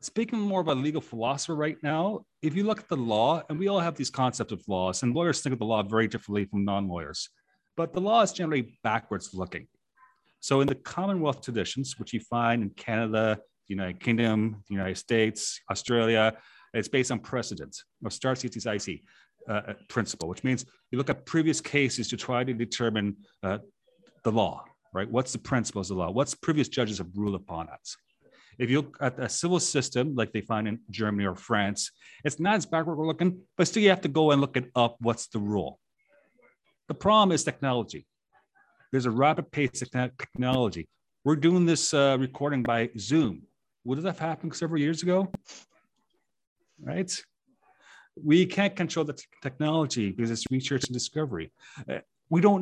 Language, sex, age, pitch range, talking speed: English, male, 40-59, 110-160 Hz, 185 wpm